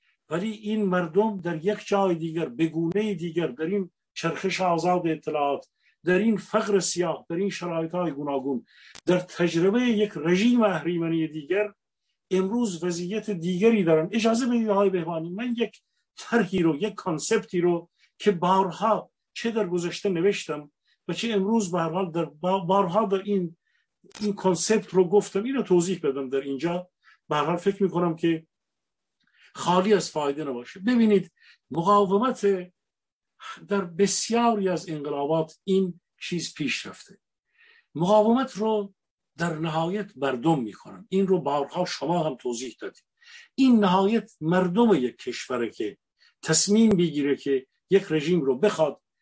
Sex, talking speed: male, 135 wpm